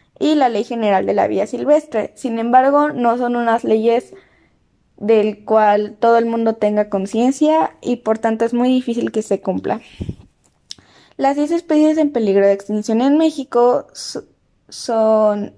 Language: Spanish